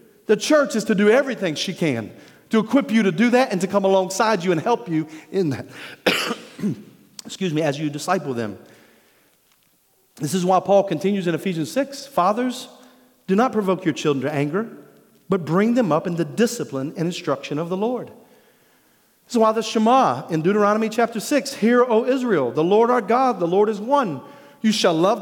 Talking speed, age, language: 195 wpm, 40-59, English